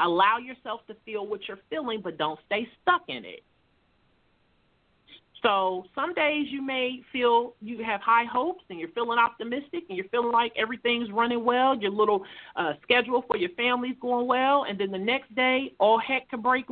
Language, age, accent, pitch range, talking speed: English, 40-59, American, 200-275 Hz, 185 wpm